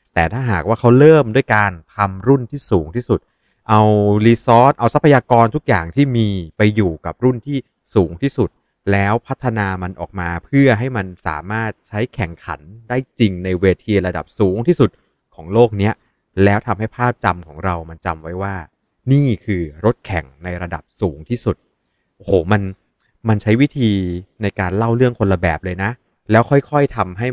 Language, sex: Thai, male